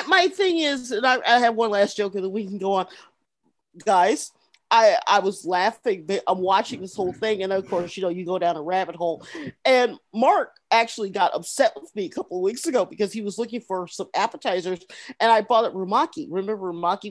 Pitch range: 200-295 Hz